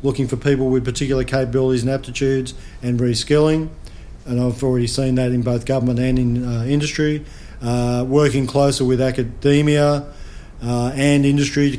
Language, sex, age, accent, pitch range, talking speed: English, male, 40-59, Australian, 125-145 Hz, 160 wpm